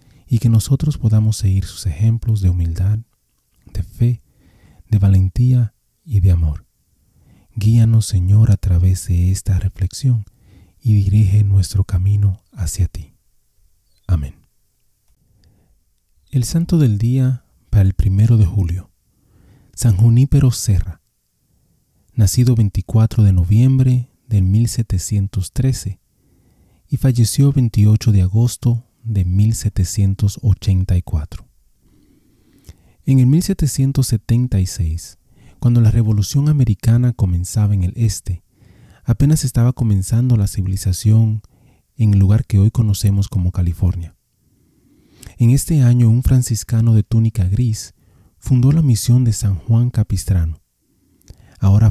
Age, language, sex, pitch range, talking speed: 40-59, Spanish, male, 95-120 Hz, 110 wpm